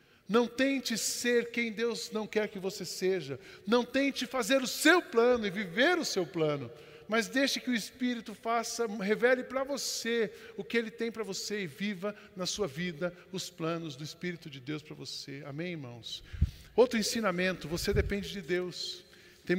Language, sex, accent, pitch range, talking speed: Portuguese, male, Brazilian, 170-225 Hz, 180 wpm